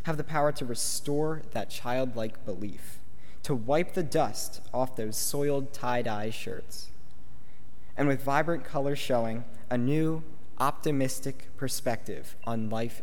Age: 20-39